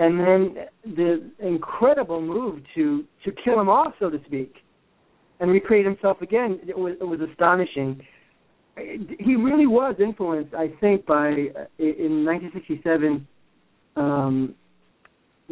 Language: English